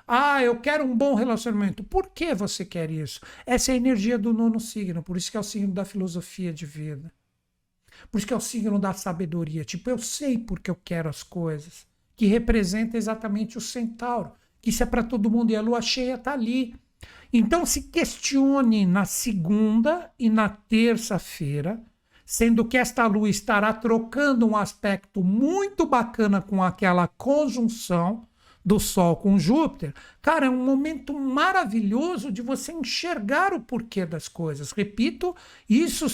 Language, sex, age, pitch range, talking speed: Portuguese, male, 60-79, 200-270 Hz, 165 wpm